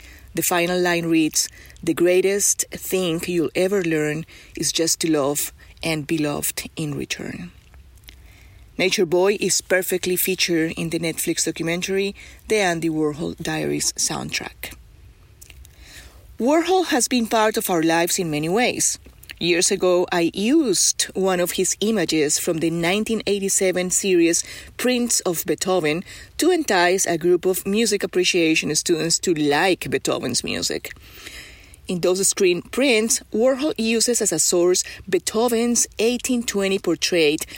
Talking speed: 130 wpm